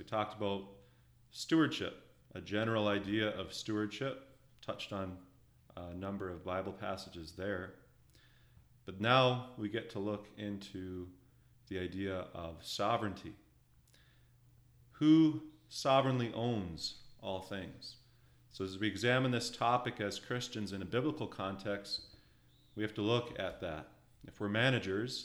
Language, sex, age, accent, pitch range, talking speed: English, male, 30-49, American, 90-120 Hz, 130 wpm